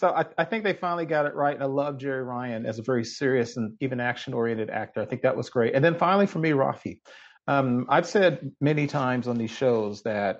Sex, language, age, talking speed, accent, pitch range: male, English, 40-59, 240 wpm, American, 115-150 Hz